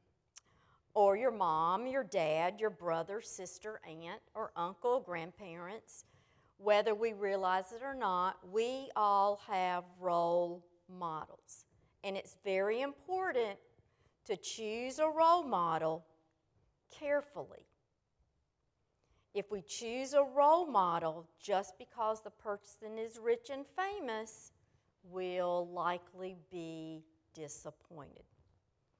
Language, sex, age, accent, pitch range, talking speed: English, female, 50-69, American, 180-255 Hz, 105 wpm